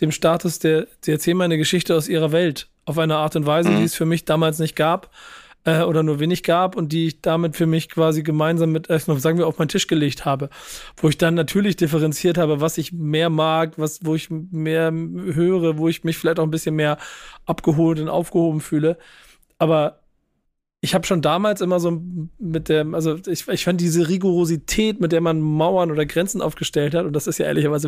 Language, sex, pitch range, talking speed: German, male, 160-175 Hz, 210 wpm